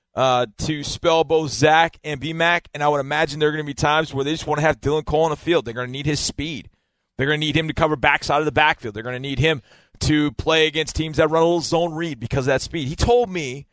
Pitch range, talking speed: 130-160 Hz, 295 wpm